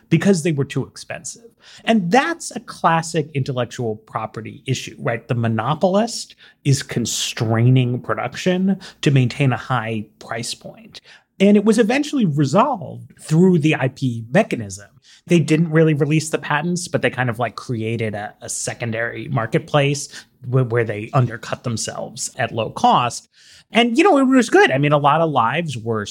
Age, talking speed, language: 30-49, 160 wpm, English